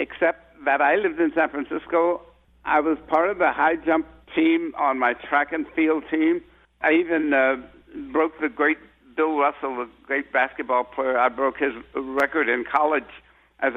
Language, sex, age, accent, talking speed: English, male, 70-89, American, 175 wpm